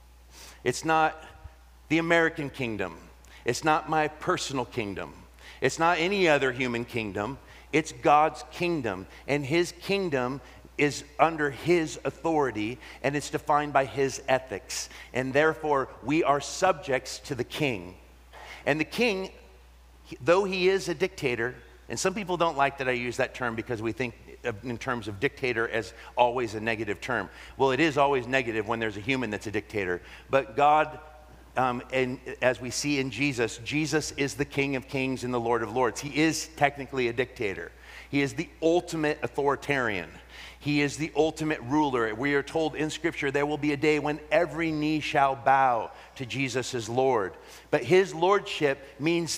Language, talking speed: English, 170 wpm